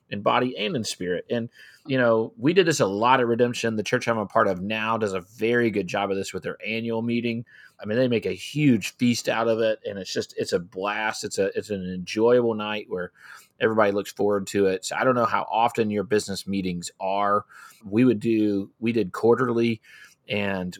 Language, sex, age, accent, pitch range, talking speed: English, male, 30-49, American, 100-115 Hz, 225 wpm